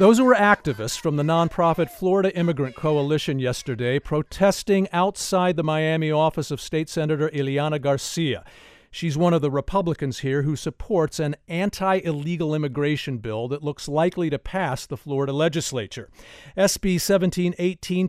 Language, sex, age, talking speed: English, male, 50-69, 145 wpm